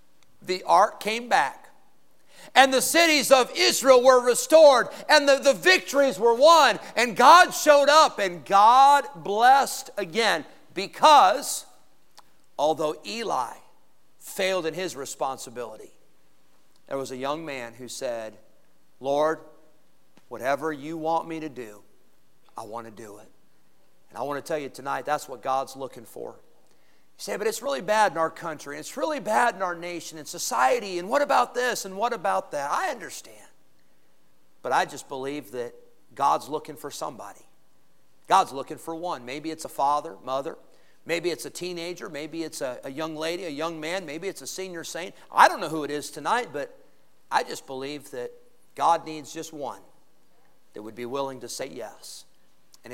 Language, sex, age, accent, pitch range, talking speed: English, male, 50-69, American, 135-230 Hz, 170 wpm